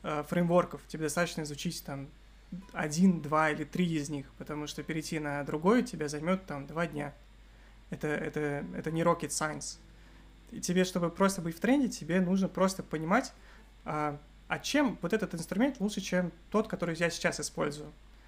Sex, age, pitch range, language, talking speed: male, 20-39, 155-190 Hz, Russian, 165 wpm